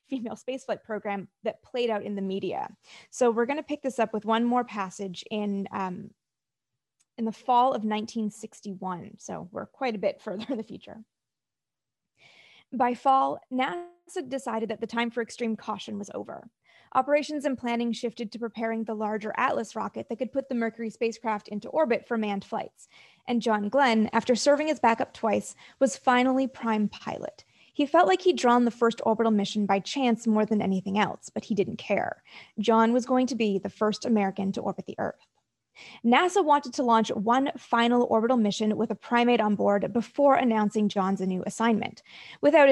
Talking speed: 185 wpm